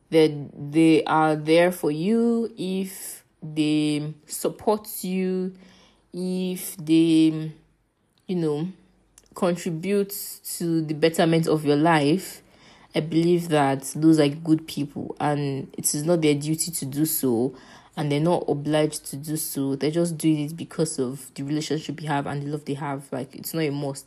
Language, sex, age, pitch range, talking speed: English, female, 20-39, 145-170 Hz, 155 wpm